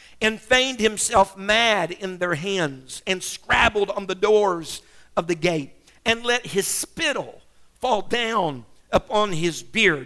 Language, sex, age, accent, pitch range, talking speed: English, male, 50-69, American, 180-235 Hz, 145 wpm